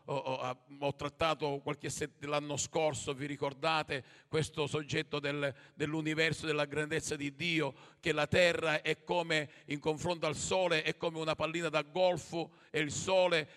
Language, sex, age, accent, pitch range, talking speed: Italian, male, 50-69, native, 145-175 Hz, 165 wpm